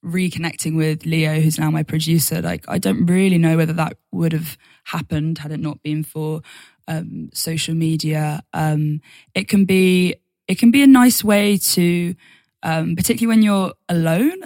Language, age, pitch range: English, 20-39, 155-175 Hz